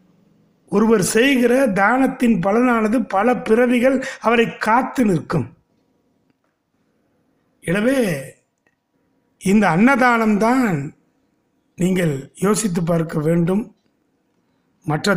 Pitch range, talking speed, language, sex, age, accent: 175-245 Hz, 65 wpm, Tamil, male, 60-79, native